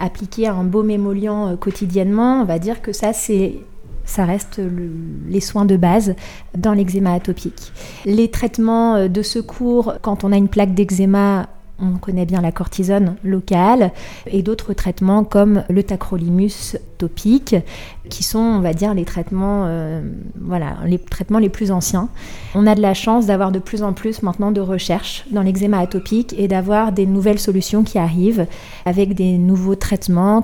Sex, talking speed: female, 170 wpm